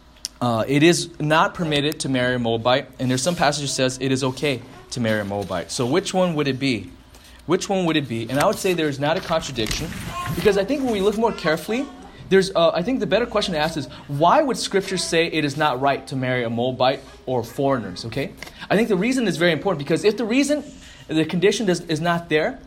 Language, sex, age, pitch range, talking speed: English, male, 30-49, 130-195 Hz, 240 wpm